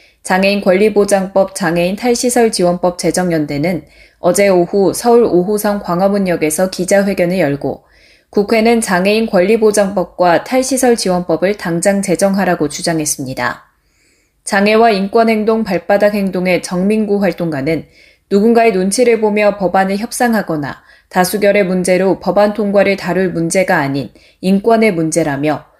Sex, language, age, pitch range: female, Korean, 20-39, 175-210 Hz